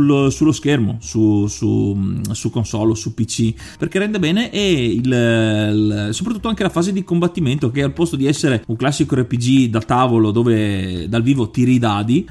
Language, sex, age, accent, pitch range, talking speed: Italian, male, 30-49, native, 115-155 Hz, 175 wpm